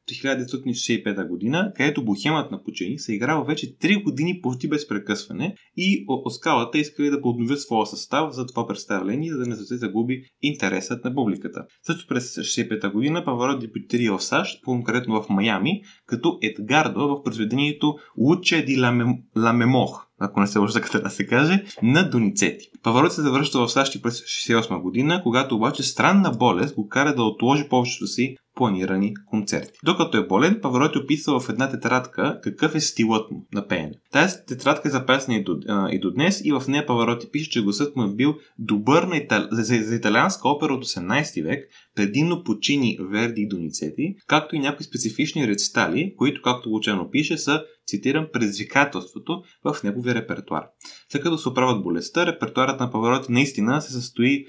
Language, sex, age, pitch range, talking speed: Bulgarian, male, 20-39, 110-145 Hz, 175 wpm